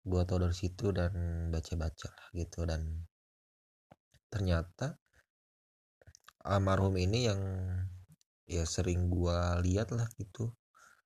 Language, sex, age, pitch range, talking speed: English, male, 20-39, 85-95 Hz, 100 wpm